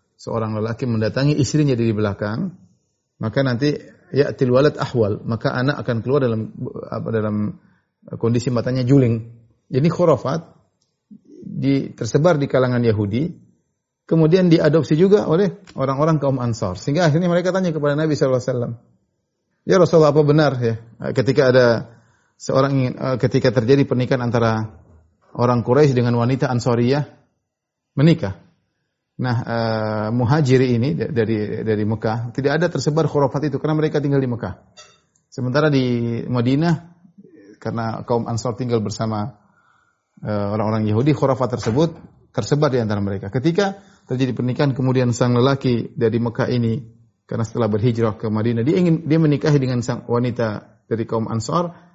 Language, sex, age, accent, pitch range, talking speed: Indonesian, male, 30-49, native, 115-150 Hz, 140 wpm